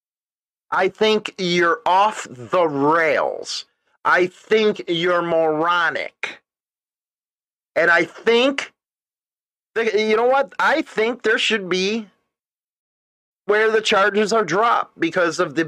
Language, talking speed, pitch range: English, 110 wpm, 175-225 Hz